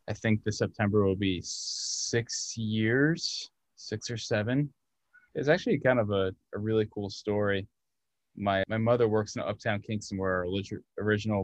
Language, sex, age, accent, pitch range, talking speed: English, male, 20-39, American, 95-110 Hz, 155 wpm